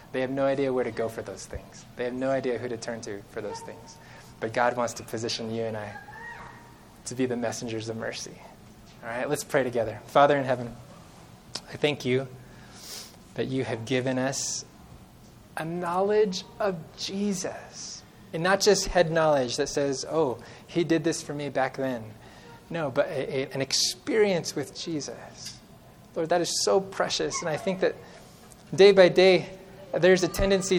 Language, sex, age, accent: English, male, 20-39, American